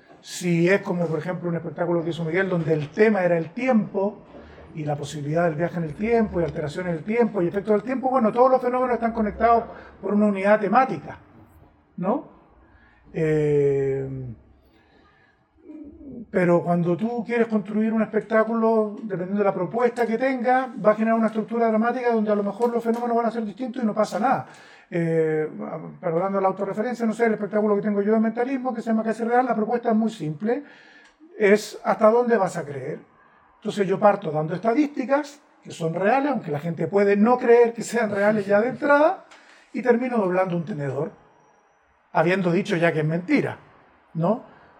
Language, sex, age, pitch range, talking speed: Spanish, male, 40-59, 175-235 Hz, 185 wpm